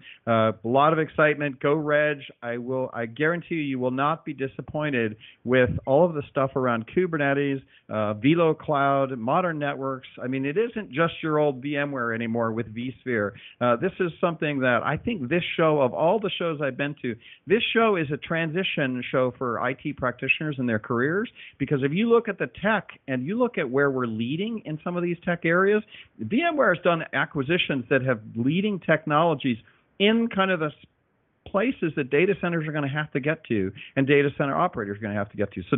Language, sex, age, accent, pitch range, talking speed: English, male, 50-69, American, 130-170 Hz, 205 wpm